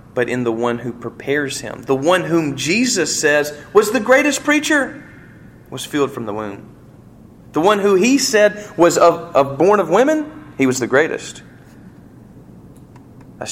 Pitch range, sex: 115-145 Hz, male